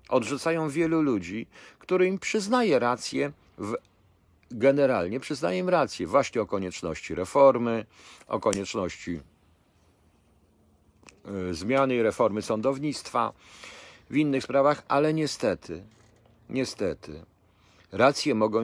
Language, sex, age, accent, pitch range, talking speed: Polish, male, 50-69, native, 95-135 Hz, 95 wpm